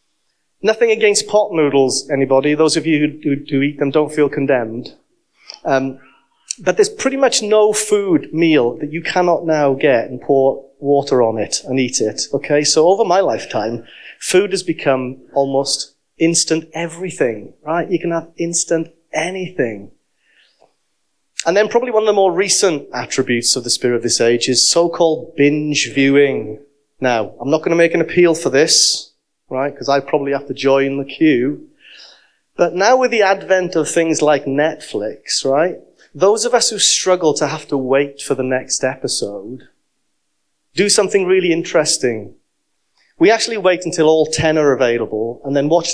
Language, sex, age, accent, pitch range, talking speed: English, male, 30-49, British, 140-185 Hz, 170 wpm